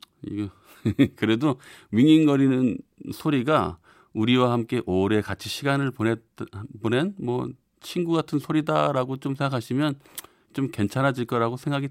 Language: Korean